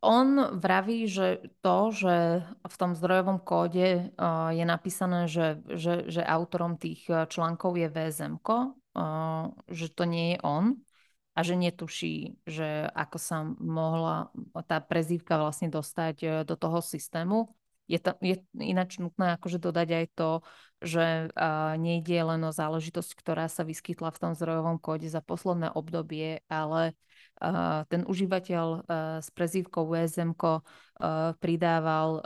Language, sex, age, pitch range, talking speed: Slovak, female, 20-39, 160-185 Hz, 135 wpm